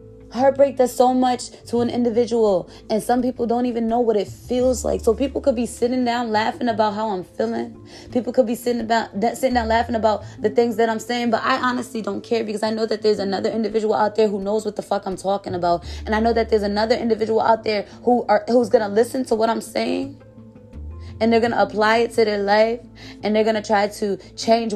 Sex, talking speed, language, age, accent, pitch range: female, 240 wpm, English, 20-39, American, 195-240 Hz